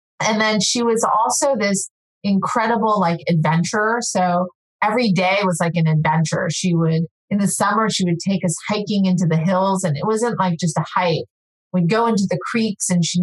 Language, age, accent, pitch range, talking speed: English, 30-49, American, 170-210 Hz, 195 wpm